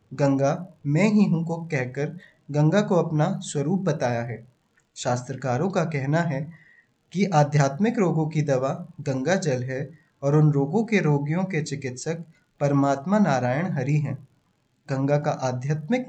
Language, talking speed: Hindi, 140 wpm